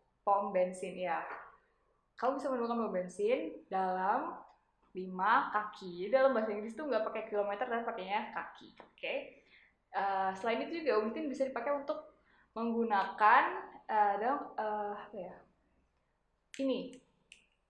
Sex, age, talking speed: female, 10-29, 130 wpm